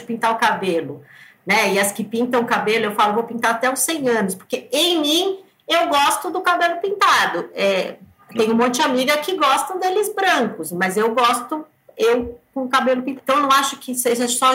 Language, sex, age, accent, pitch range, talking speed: Portuguese, female, 40-59, Brazilian, 205-270 Hz, 205 wpm